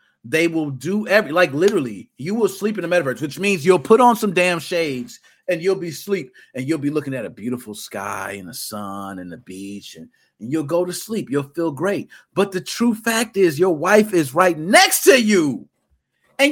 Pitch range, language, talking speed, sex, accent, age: 145-210 Hz, English, 220 wpm, male, American, 40-59